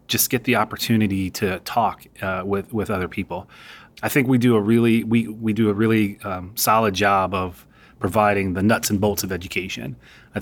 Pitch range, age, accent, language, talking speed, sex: 95-110 Hz, 30-49, American, English, 195 wpm, male